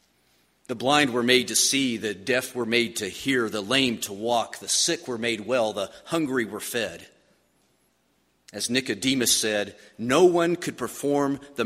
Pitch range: 100-135 Hz